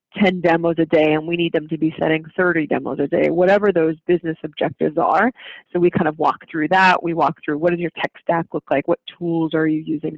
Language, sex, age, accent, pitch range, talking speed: English, female, 30-49, American, 160-180 Hz, 250 wpm